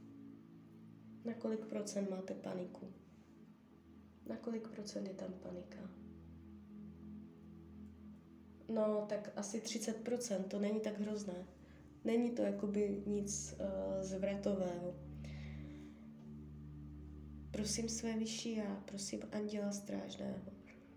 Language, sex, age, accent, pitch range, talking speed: Czech, female, 20-39, native, 180-210 Hz, 90 wpm